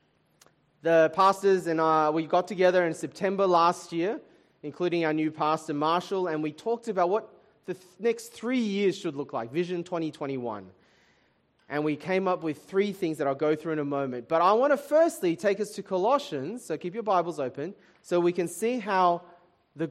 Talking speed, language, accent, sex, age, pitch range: 195 wpm, English, Australian, male, 20-39, 150-195 Hz